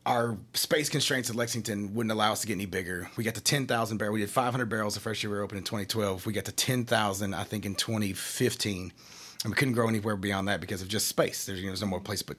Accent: American